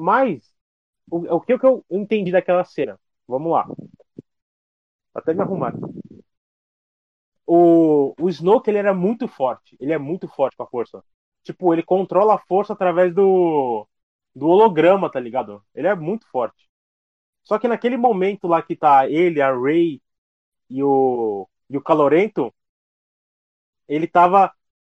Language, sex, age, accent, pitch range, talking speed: Portuguese, male, 30-49, Brazilian, 150-205 Hz, 145 wpm